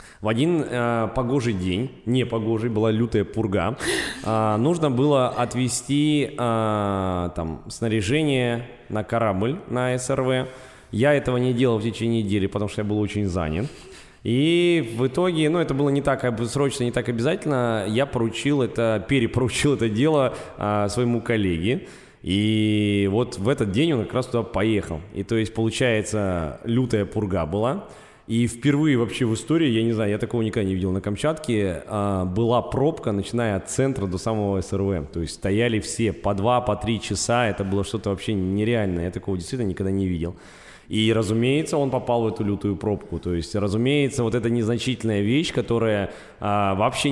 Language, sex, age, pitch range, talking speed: Russian, male, 20-39, 100-125 Hz, 165 wpm